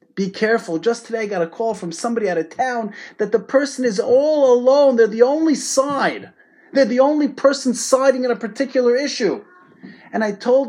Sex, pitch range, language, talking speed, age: male, 205-265 Hz, English, 195 wpm, 30-49